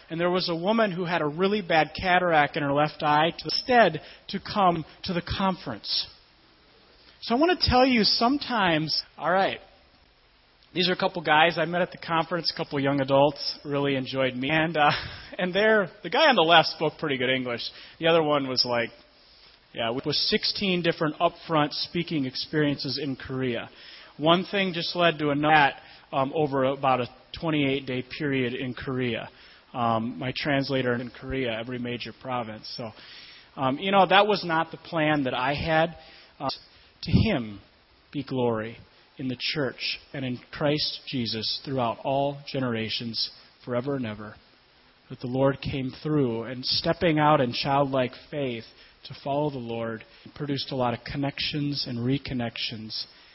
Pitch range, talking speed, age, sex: 125-165 Hz, 170 wpm, 30-49, male